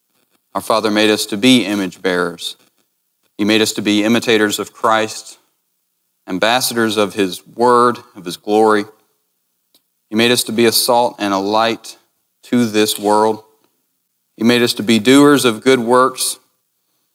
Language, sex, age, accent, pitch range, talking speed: English, male, 40-59, American, 90-110 Hz, 160 wpm